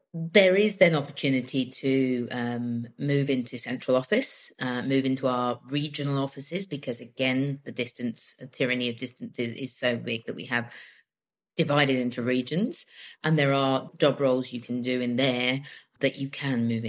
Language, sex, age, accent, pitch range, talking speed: English, female, 30-49, British, 120-140 Hz, 170 wpm